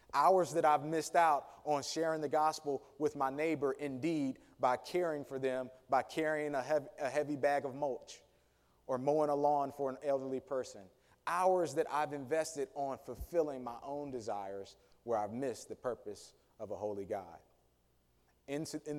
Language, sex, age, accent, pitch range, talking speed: English, male, 30-49, American, 110-145 Hz, 160 wpm